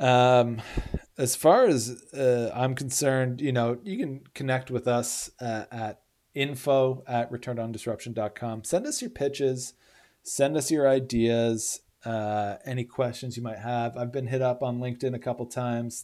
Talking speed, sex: 155 wpm, male